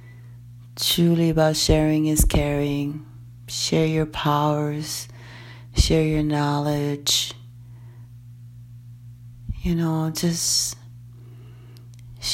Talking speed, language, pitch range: 70 wpm, English, 120-155 Hz